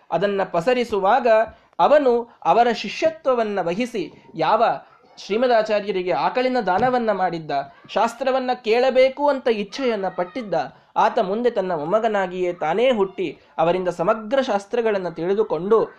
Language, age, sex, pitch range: Kannada, 20-39, male, 170-230 Hz